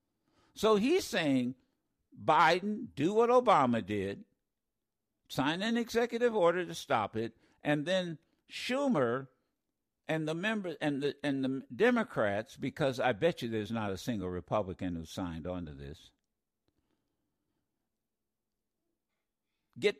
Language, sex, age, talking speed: English, male, 60-79, 125 wpm